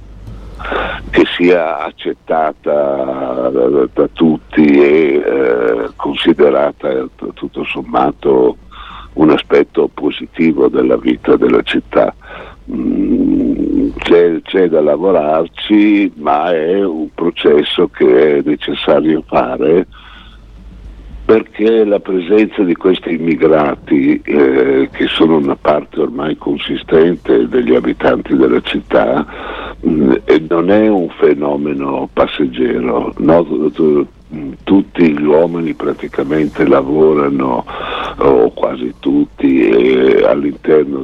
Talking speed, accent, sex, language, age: 95 wpm, native, male, Italian, 60-79